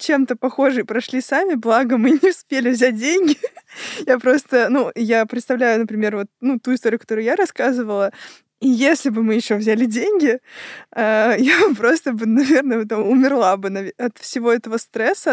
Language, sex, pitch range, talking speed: Russian, female, 220-260 Hz, 155 wpm